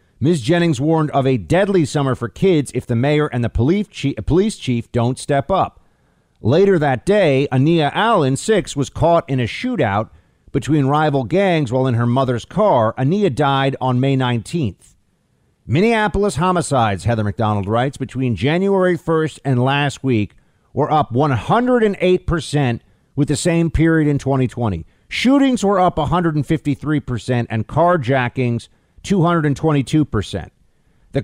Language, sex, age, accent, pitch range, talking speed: English, male, 50-69, American, 125-170 Hz, 145 wpm